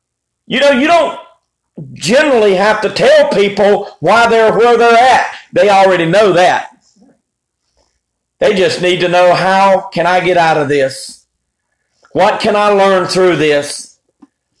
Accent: American